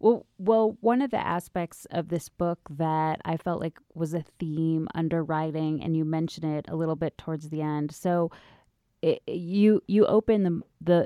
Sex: female